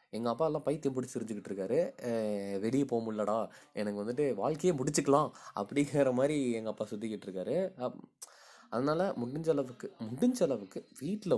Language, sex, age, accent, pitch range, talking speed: Tamil, male, 20-39, native, 105-140 Hz, 110 wpm